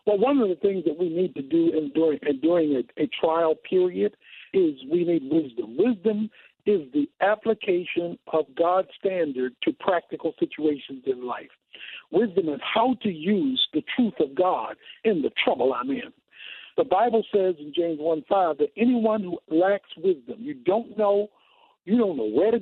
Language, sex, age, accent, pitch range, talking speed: English, male, 60-79, American, 170-235 Hz, 180 wpm